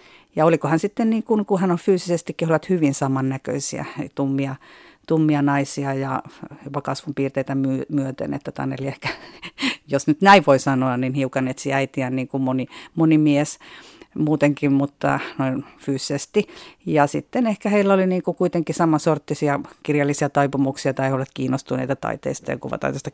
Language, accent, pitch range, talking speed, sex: Finnish, native, 135-160 Hz, 145 wpm, female